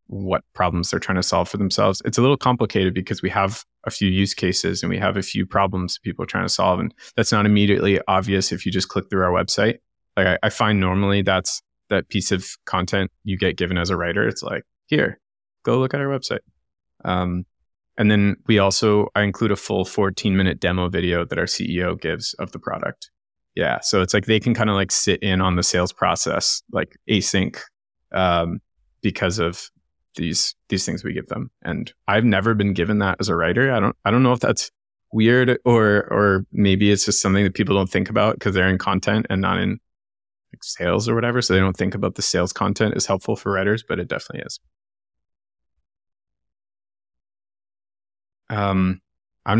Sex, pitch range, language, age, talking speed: male, 90-105 Hz, English, 20-39, 205 wpm